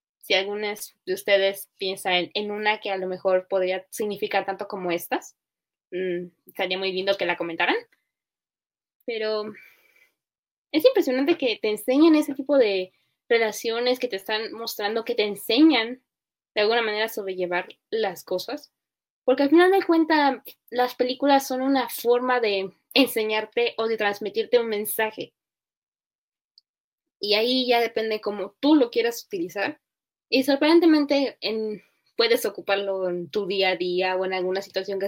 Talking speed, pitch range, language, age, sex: 150 wpm, 195-255 Hz, Spanish, 10-29, female